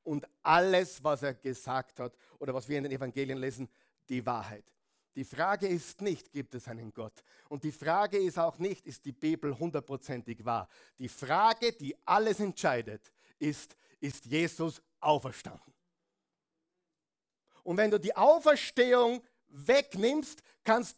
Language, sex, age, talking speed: German, male, 50-69, 145 wpm